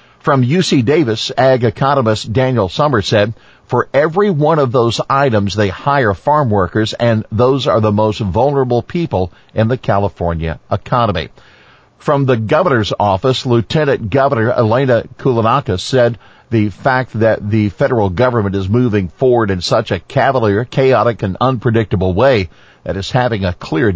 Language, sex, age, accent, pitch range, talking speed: English, male, 50-69, American, 100-130 Hz, 150 wpm